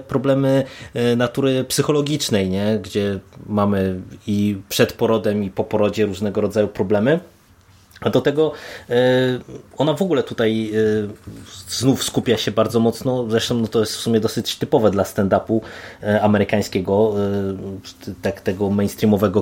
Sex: male